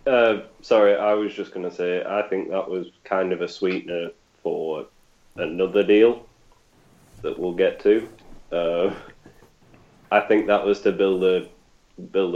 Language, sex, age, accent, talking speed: English, male, 10-29, British, 145 wpm